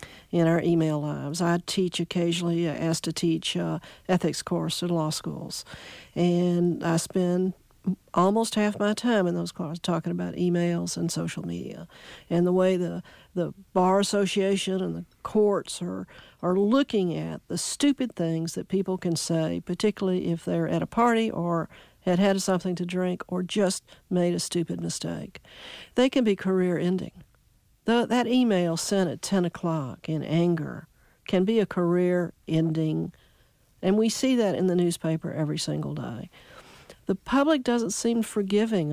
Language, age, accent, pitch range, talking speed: English, 50-69, American, 165-195 Hz, 160 wpm